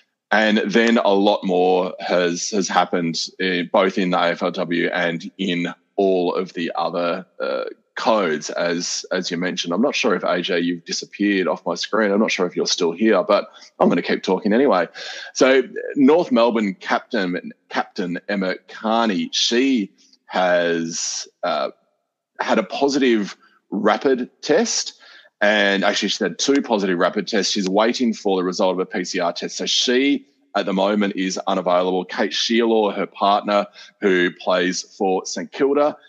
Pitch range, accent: 90-110 Hz, Australian